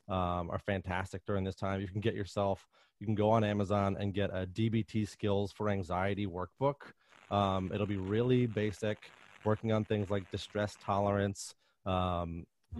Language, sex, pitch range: English, male, 95-110 Hz